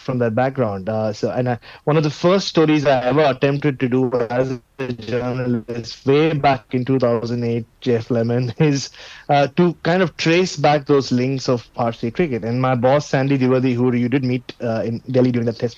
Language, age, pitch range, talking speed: English, 30-49, 120-150 Hz, 200 wpm